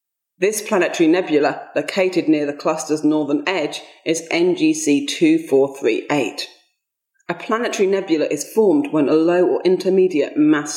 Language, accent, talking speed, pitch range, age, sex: English, British, 130 wpm, 160-240 Hz, 30-49, female